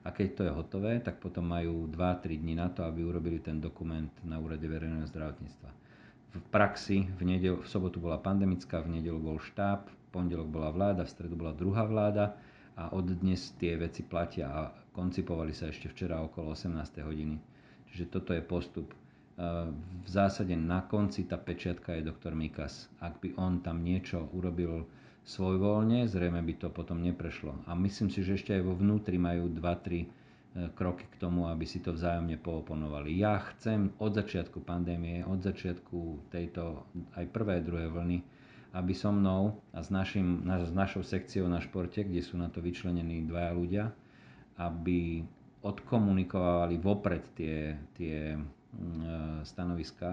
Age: 50-69